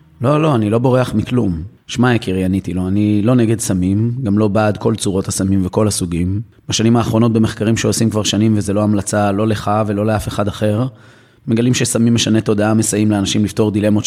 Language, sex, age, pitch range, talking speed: Hebrew, male, 30-49, 95-115 Hz, 190 wpm